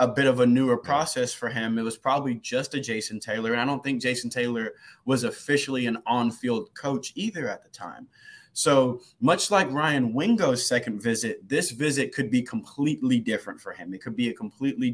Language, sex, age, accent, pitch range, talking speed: English, male, 20-39, American, 115-140 Hz, 200 wpm